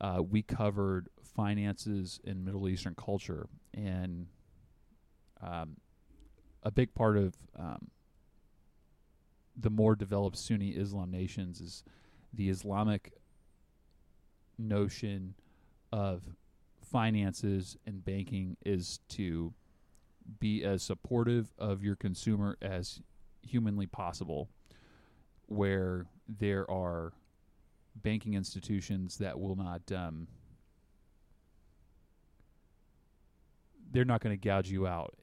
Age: 30-49